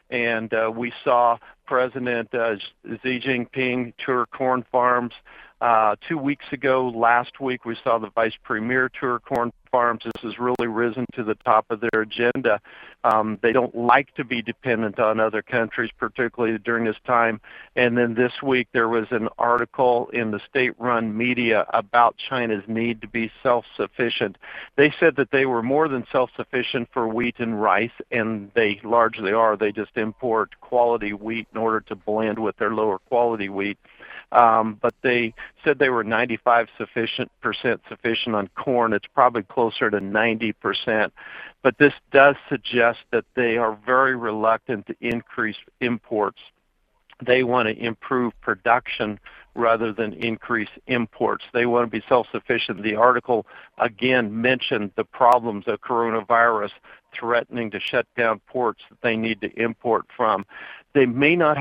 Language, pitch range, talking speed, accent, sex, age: English, 110-125 Hz, 160 wpm, American, male, 50-69